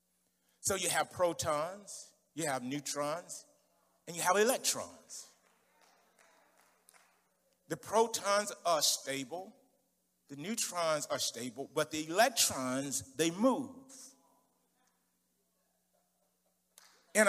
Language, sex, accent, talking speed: English, male, American, 85 wpm